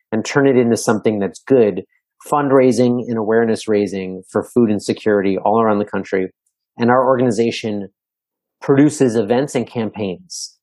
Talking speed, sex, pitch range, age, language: 145 wpm, male, 105-130 Hz, 30-49, English